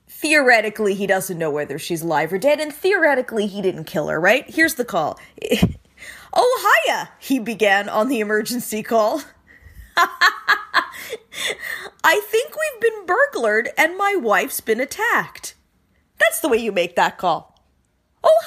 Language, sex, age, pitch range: English, female, 20-39, 200-320 Hz